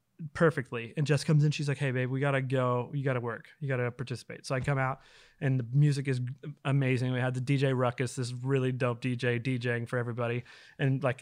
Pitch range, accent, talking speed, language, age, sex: 125-145 Hz, American, 235 wpm, English, 20-39, male